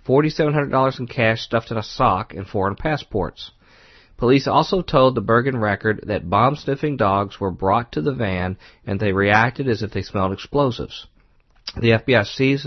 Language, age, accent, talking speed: English, 40-59, American, 165 wpm